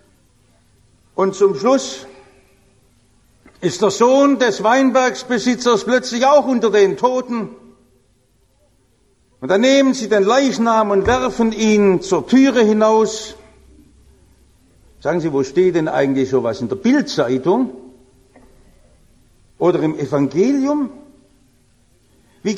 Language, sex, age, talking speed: English, male, 60-79, 105 wpm